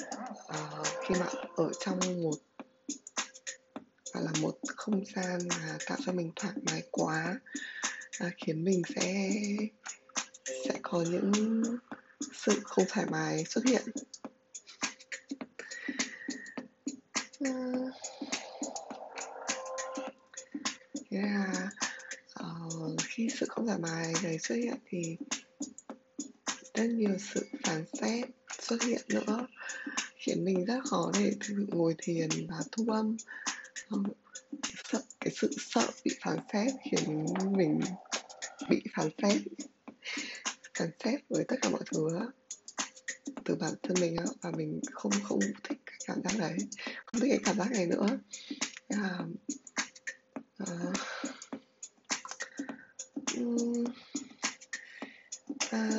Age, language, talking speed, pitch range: 20-39, Vietnamese, 110 wpm, 200-265 Hz